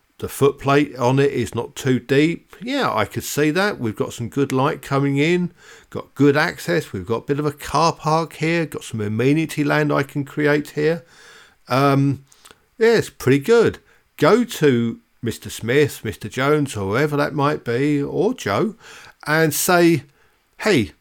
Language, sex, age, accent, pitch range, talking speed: English, male, 50-69, British, 120-155 Hz, 175 wpm